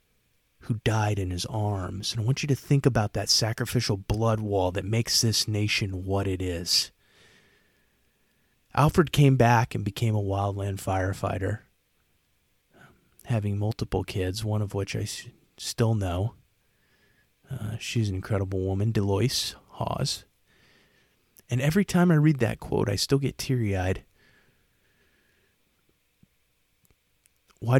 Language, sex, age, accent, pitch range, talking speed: English, male, 30-49, American, 100-125 Hz, 130 wpm